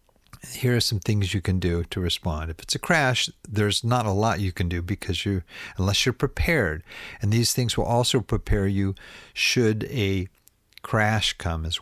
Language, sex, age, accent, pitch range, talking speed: English, male, 50-69, American, 90-115 Hz, 190 wpm